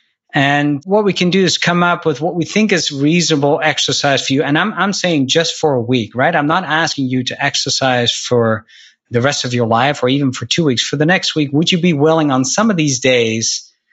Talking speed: 240 wpm